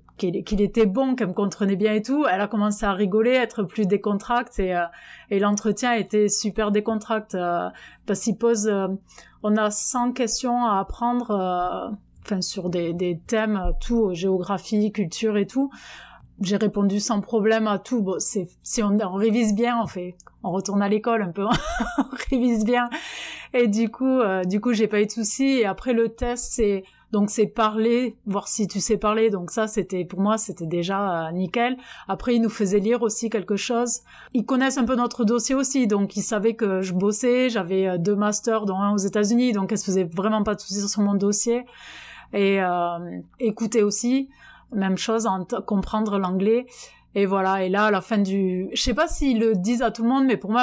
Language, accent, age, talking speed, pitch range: French, French, 20-39, 210 wpm, 200-235 Hz